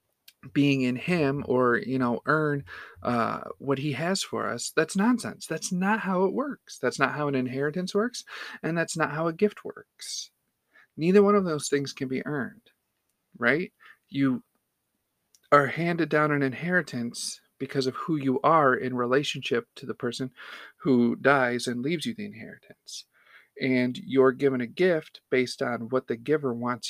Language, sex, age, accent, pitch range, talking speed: English, male, 40-59, American, 125-155 Hz, 170 wpm